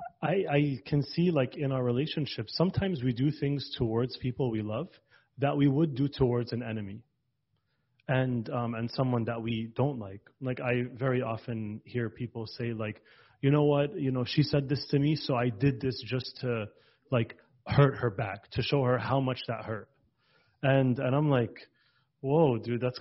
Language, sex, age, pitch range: English, male, 30-49, 120-145 Hz